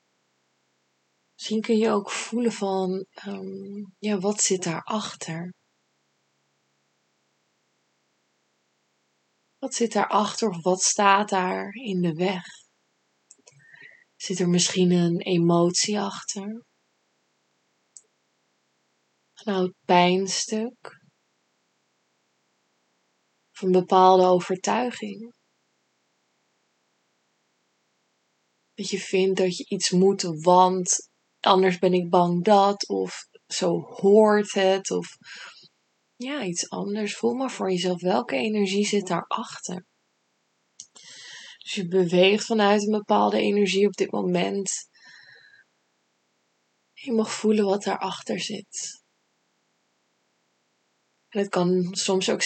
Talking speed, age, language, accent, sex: 95 wpm, 20-39, Dutch, Dutch, female